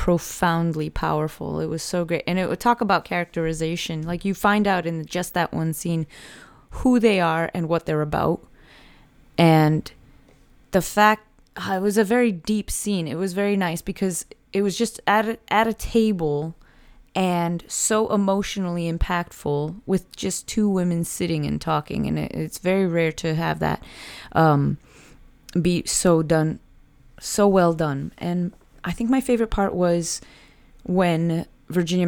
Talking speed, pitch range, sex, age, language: 155 wpm, 155-185 Hz, female, 20-39, English